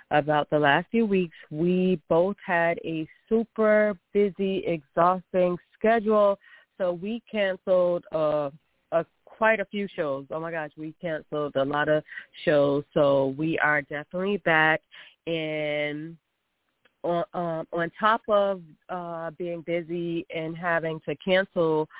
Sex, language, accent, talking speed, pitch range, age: female, English, American, 135 wpm, 150-195 Hz, 30-49